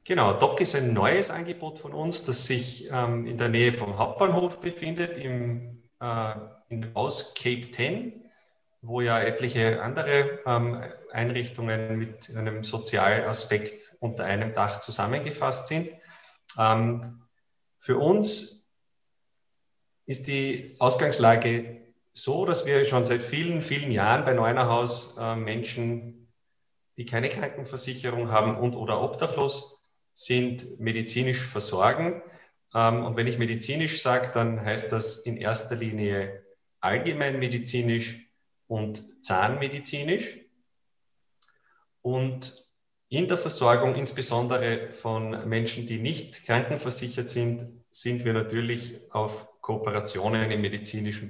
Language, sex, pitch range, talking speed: German, male, 110-130 Hz, 110 wpm